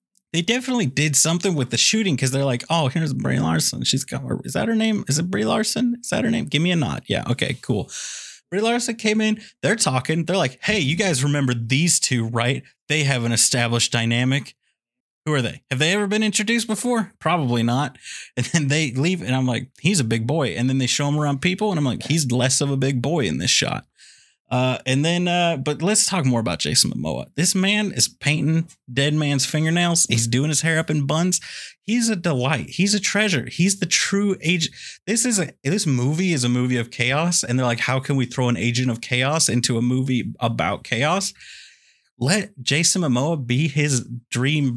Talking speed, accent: 220 wpm, American